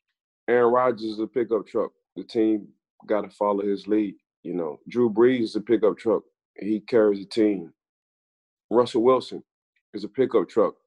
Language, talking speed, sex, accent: English, 170 wpm, male, American